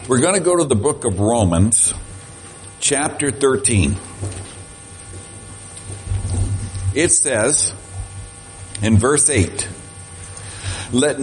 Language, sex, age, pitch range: English, male, 60-79, 100-140 Hz